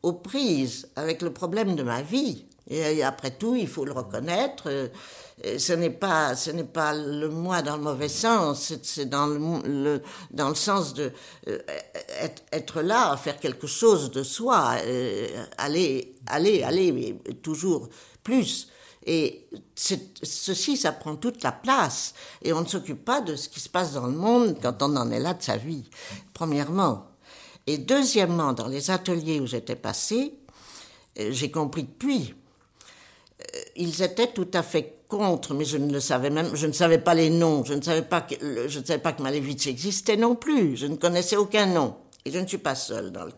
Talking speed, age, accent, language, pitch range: 190 wpm, 60-79, French, French, 140-220 Hz